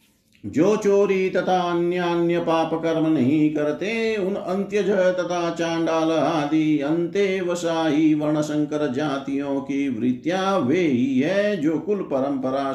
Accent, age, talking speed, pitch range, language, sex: native, 50-69, 120 wpm, 140-180 Hz, Hindi, male